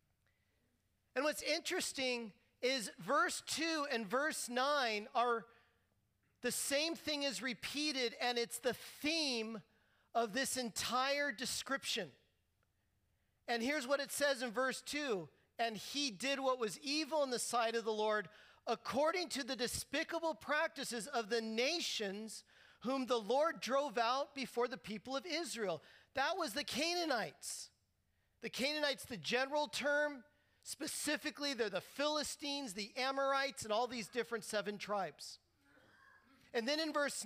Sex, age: male, 40-59